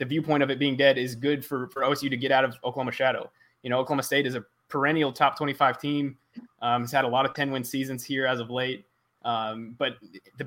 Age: 20-39